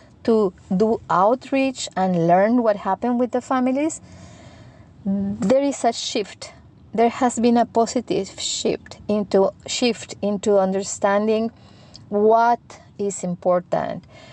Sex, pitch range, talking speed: female, 190-230 Hz, 115 wpm